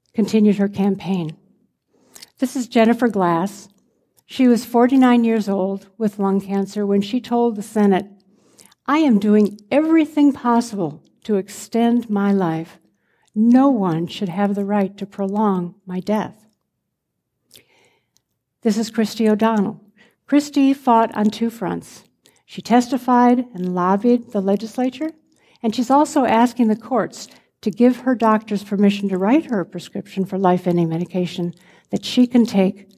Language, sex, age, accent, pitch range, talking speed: English, female, 60-79, American, 195-235 Hz, 140 wpm